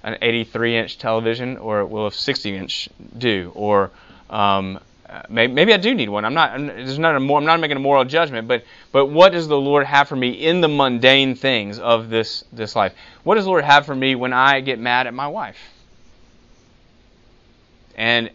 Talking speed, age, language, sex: 200 wpm, 20-39, English, male